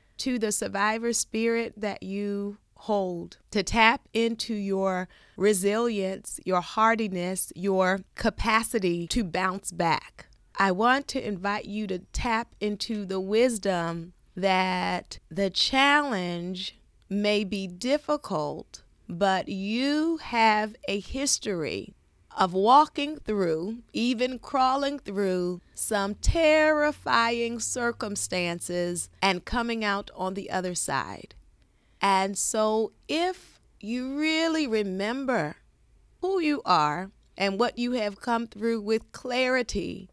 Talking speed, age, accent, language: 110 wpm, 30-49, American, English